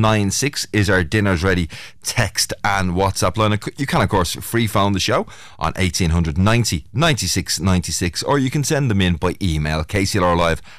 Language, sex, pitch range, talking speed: English, male, 90-115 Hz, 160 wpm